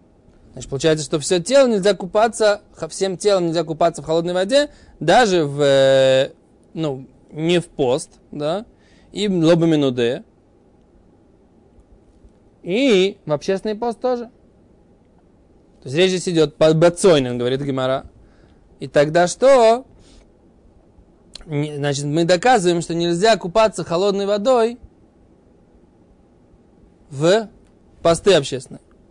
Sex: male